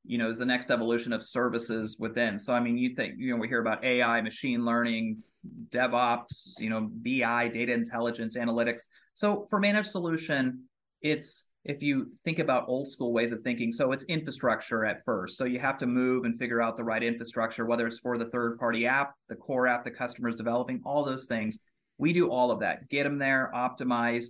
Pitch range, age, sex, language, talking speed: 115-140 Hz, 30-49, male, English, 205 wpm